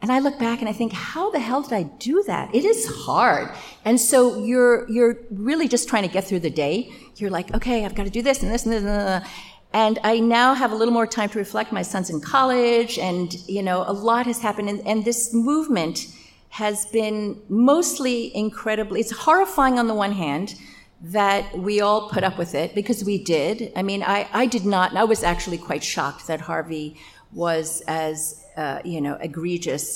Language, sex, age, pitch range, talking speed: English, female, 50-69, 165-230 Hz, 220 wpm